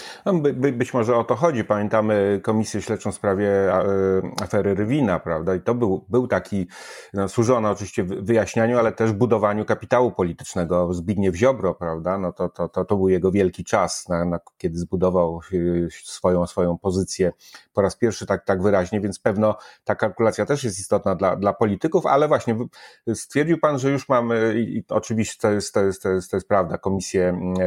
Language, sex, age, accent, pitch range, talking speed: Polish, male, 30-49, native, 95-110 Hz, 180 wpm